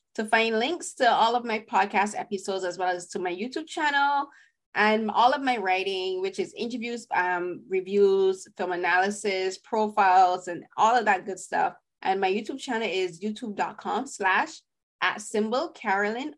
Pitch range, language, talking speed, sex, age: 180-235 Hz, English, 165 wpm, female, 20-39